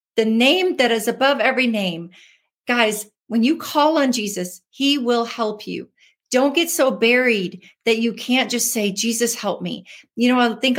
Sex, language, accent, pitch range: female, English, American, 200-265 Hz